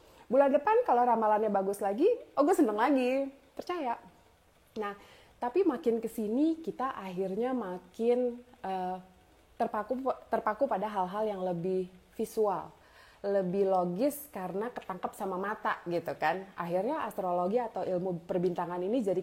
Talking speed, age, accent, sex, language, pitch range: 130 wpm, 20-39, native, female, Indonesian, 180-235 Hz